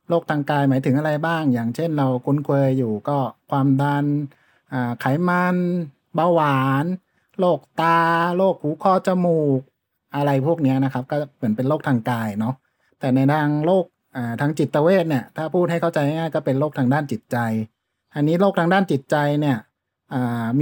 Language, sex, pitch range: Thai, male, 125-165 Hz